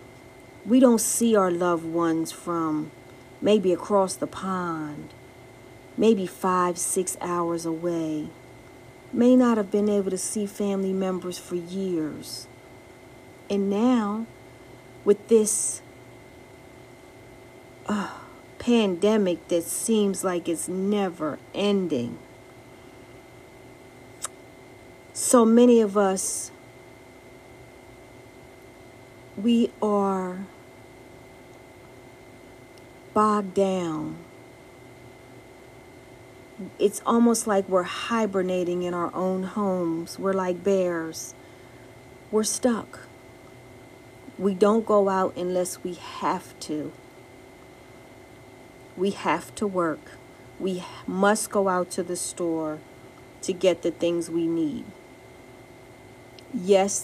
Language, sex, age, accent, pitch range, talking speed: English, female, 40-59, American, 130-200 Hz, 90 wpm